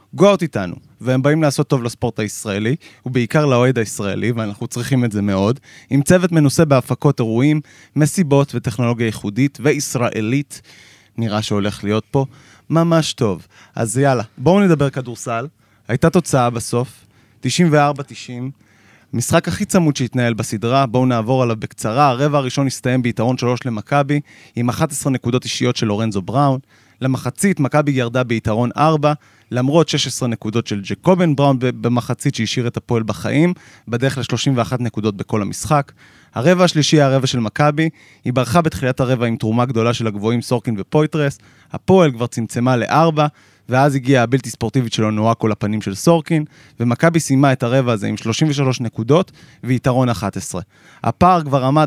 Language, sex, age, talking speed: Hebrew, male, 30-49, 125 wpm